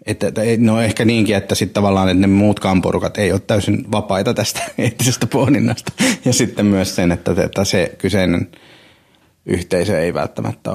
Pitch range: 95-110 Hz